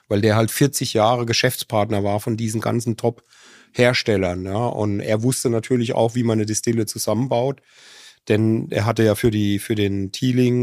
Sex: male